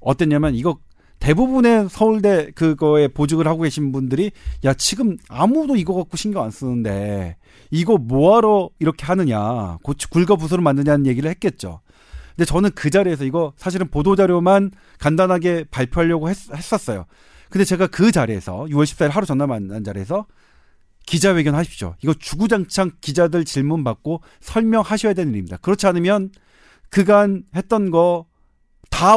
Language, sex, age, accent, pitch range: Korean, male, 40-59, native, 135-195 Hz